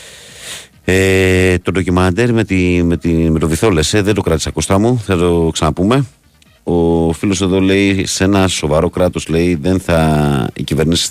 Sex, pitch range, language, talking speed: male, 75-90 Hz, Greek, 155 wpm